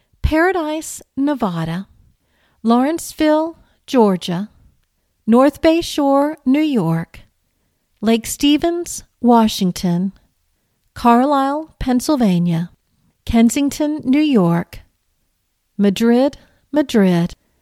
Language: English